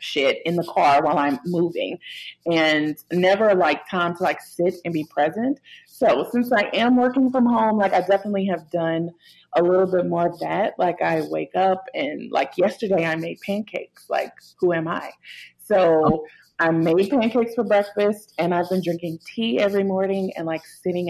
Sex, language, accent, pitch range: female, English, American, 160-200 Hz